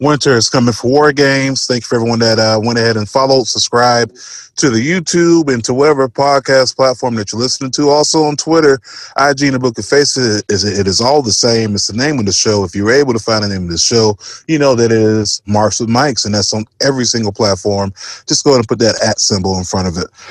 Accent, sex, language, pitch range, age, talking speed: American, male, English, 105-130 Hz, 30-49, 255 wpm